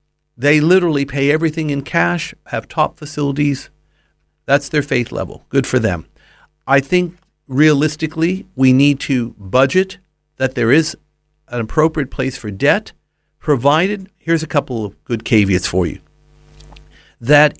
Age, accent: 50-69, American